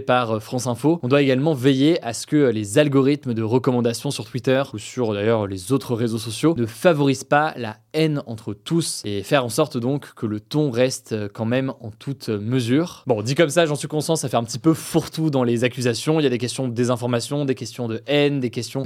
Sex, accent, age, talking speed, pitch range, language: male, French, 20-39, 230 wpm, 120-150 Hz, French